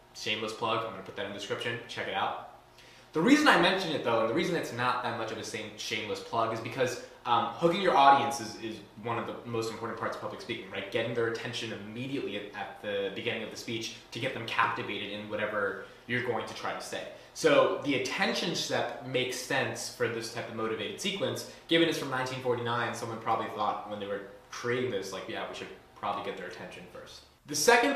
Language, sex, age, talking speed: English, male, 20-39, 230 wpm